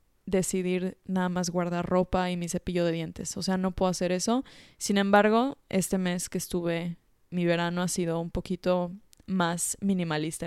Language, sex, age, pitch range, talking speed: English, female, 20-39, 180-205 Hz, 170 wpm